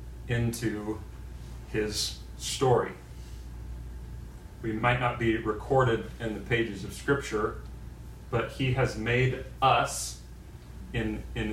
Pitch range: 90-115 Hz